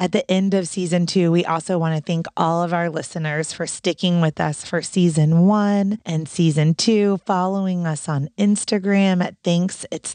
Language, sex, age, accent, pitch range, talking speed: English, female, 30-49, American, 175-210 Hz, 190 wpm